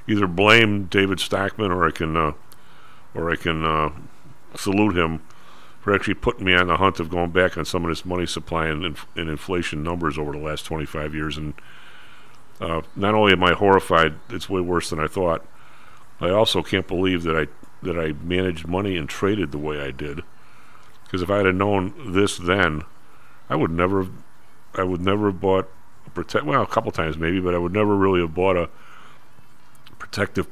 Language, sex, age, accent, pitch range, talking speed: English, male, 50-69, American, 85-105 Hz, 195 wpm